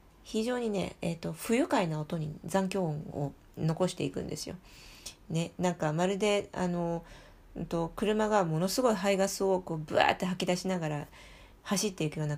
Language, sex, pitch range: Japanese, female, 165-210 Hz